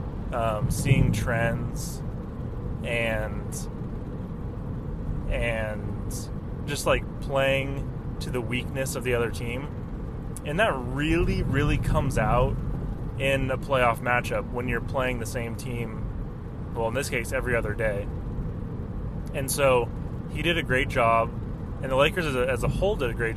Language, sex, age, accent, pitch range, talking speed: English, male, 20-39, American, 115-135 Hz, 145 wpm